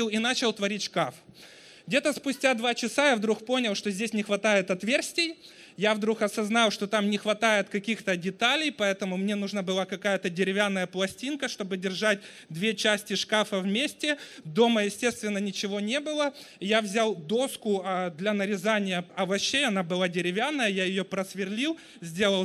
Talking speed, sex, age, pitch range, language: 150 wpm, male, 20-39, 195-235 Hz, Russian